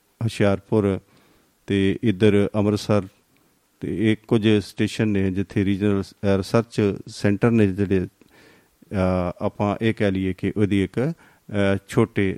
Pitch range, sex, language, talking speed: 95-115 Hz, male, Punjabi, 110 wpm